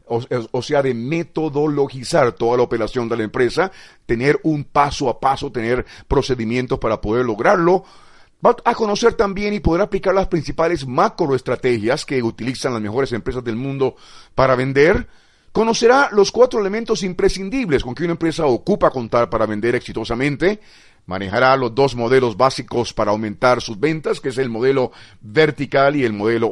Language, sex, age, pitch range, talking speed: Spanish, male, 40-59, 120-170 Hz, 160 wpm